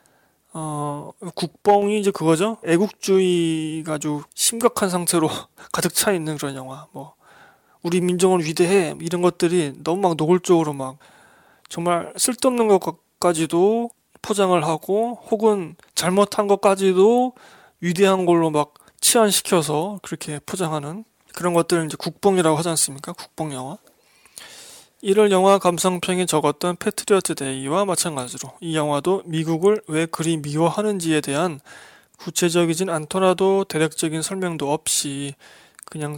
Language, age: Korean, 20-39